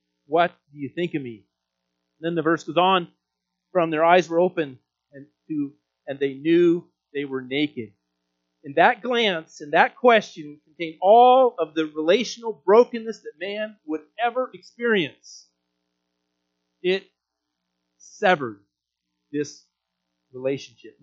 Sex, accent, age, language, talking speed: male, American, 40-59, English, 130 wpm